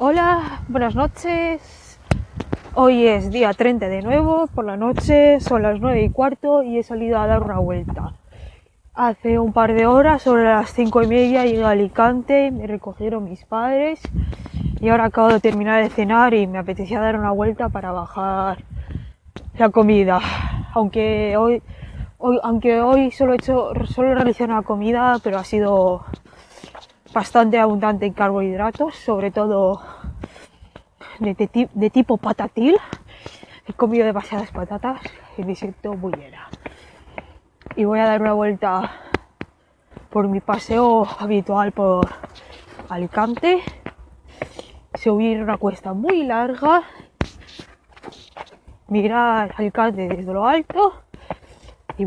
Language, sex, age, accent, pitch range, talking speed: English, female, 20-39, Spanish, 205-245 Hz, 135 wpm